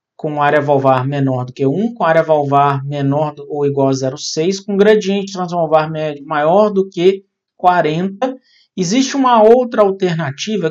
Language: Portuguese